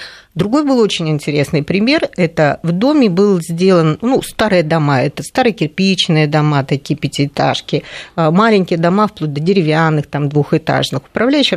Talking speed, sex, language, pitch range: 140 wpm, female, Russian, 155-210 Hz